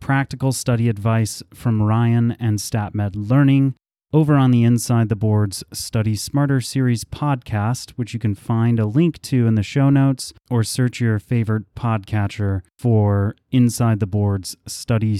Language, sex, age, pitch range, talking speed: English, male, 30-49, 105-130 Hz, 155 wpm